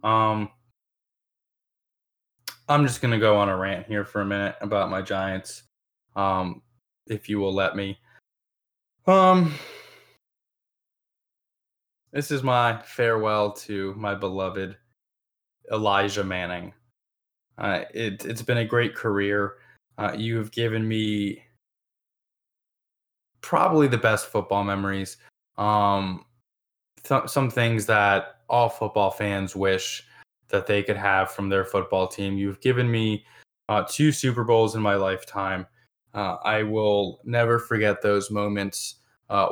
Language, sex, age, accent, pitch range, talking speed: English, male, 20-39, American, 100-115 Hz, 125 wpm